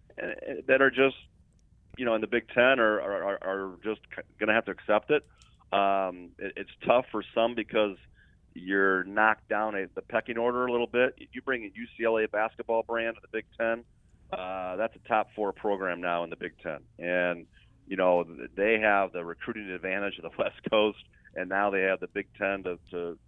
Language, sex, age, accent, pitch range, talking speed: English, male, 40-59, American, 95-110 Hz, 200 wpm